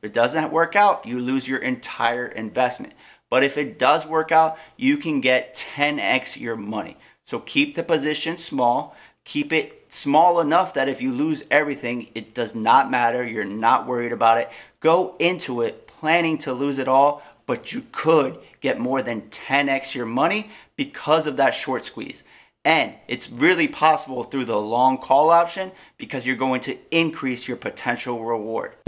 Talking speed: 170 wpm